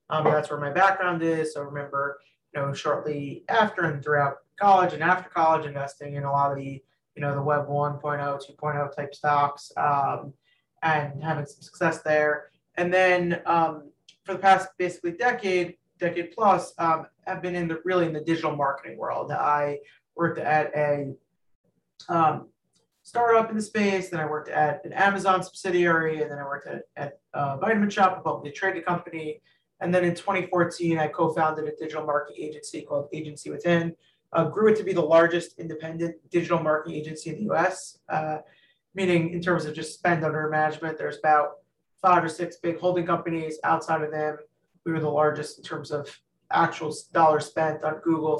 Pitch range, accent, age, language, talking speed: 150-175 Hz, American, 30-49, English, 180 wpm